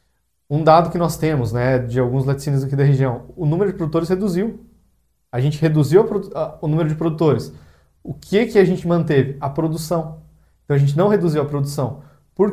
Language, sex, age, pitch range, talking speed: Portuguese, male, 20-39, 135-170 Hz, 205 wpm